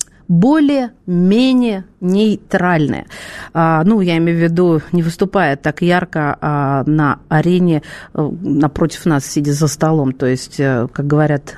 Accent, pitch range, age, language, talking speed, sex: native, 175-245 Hz, 40-59, Russian, 125 wpm, female